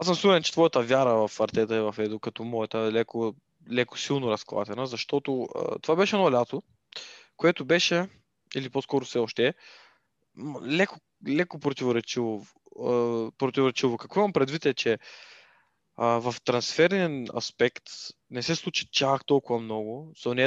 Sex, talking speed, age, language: male, 145 wpm, 20-39, Bulgarian